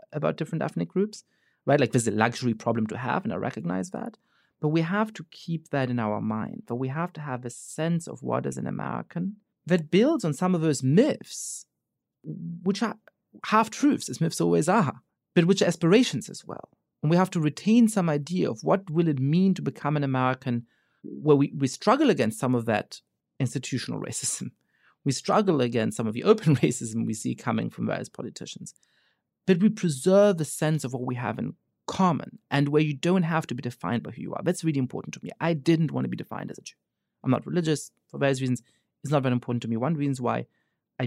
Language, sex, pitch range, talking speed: English, male, 125-180 Hz, 220 wpm